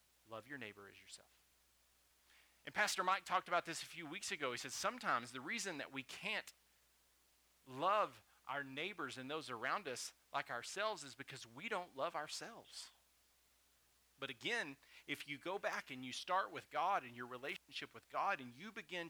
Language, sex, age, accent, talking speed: English, male, 40-59, American, 180 wpm